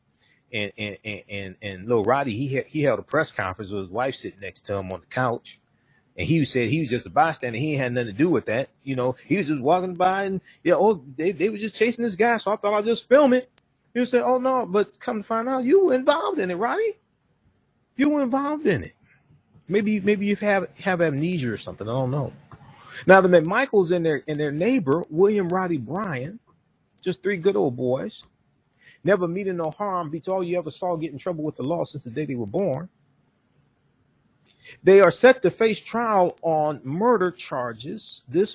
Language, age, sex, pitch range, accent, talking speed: English, 30-49, male, 145-205 Hz, American, 225 wpm